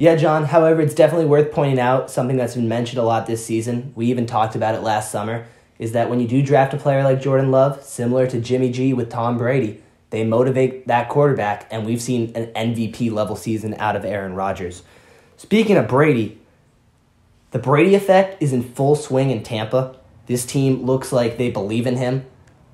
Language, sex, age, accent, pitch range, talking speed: English, male, 10-29, American, 115-150 Hz, 200 wpm